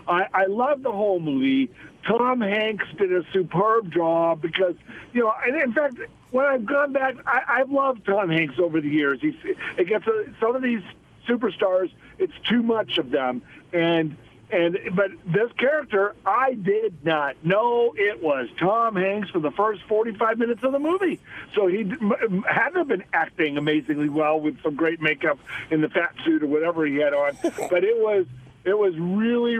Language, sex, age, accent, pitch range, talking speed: English, male, 50-69, American, 165-230 Hz, 185 wpm